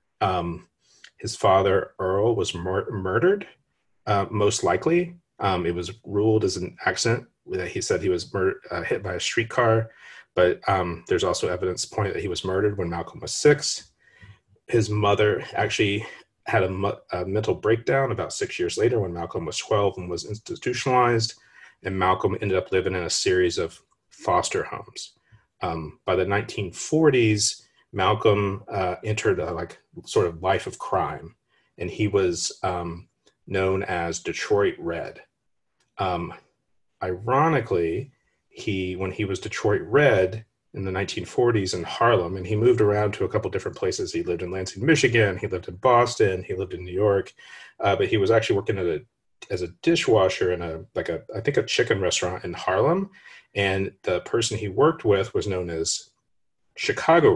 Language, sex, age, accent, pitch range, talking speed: English, male, 30-49, American, 95-135 Hz, 170 wpm